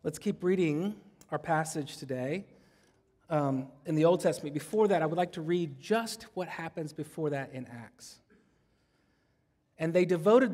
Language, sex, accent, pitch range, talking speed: English, male, American, 155-200 Hz, 160 wpm